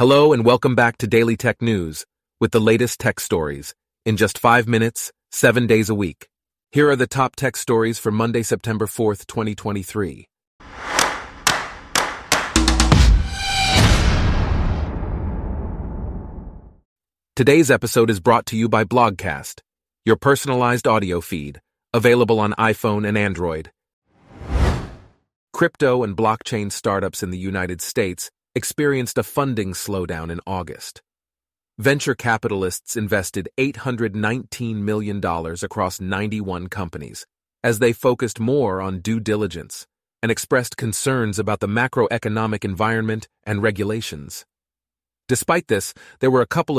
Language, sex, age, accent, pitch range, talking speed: English, male, 40-59, American, 90-120 Hz, 120 wpm